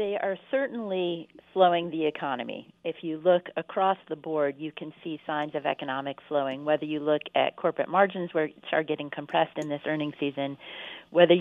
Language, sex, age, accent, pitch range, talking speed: English, female, 40-59, American, 150-180 Hz, 180 wpm